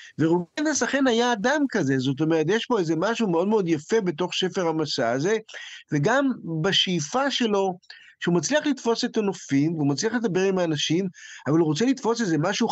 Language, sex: Hebrew, male